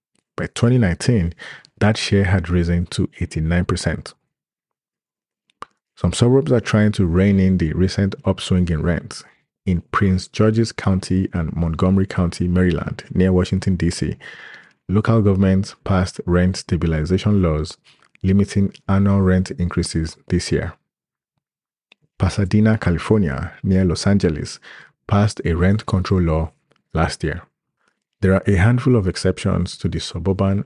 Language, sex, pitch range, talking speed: English, male, 90-100 Hz, 125 wpm